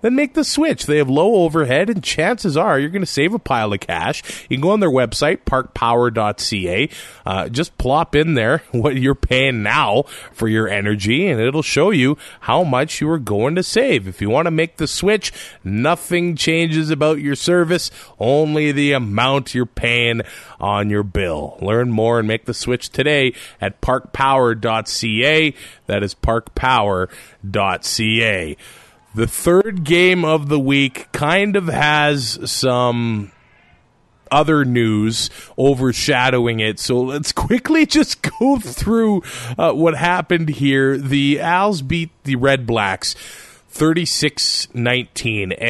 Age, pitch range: 30-49, 115-160 Hz